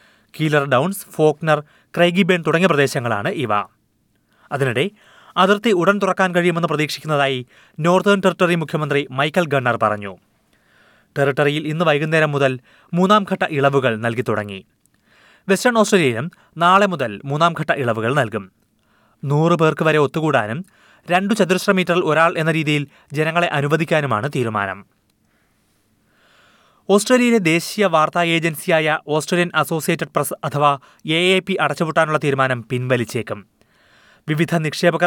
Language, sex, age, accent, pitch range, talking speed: Malayalam, male, 30-49, native, 135-175 Hz, 105 wpm